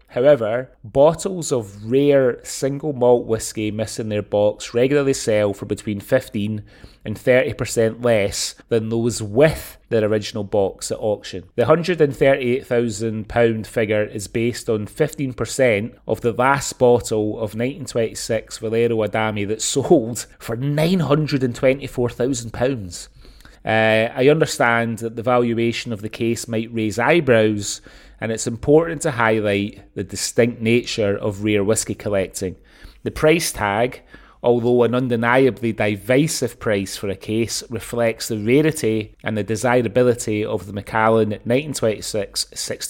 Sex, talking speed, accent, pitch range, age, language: male, 125 wpm, British, 110-130 Hz, 30-49, English